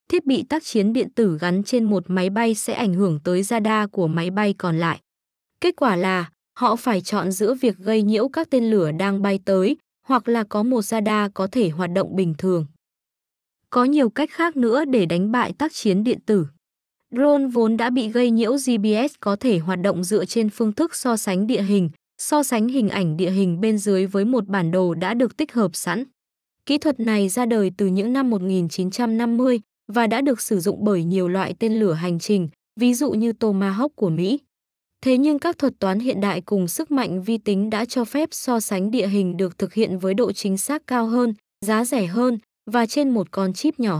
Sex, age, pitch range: female, 20-39, 195-245 Hz